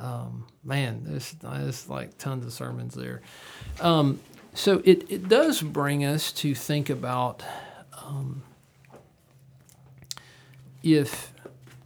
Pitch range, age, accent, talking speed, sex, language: 120-145 Hz, 50-69, American, 100 wpm, male, English